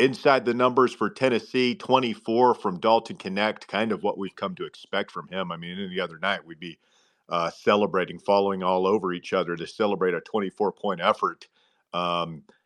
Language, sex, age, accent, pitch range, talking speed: English, male, 40-59, American, 105-170 Hz, 180 wpm